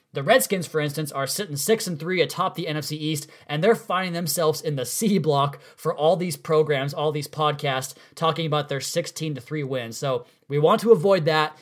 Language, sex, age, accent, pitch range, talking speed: English, male, 20-39, American, 145-175 Hz, 210 wpm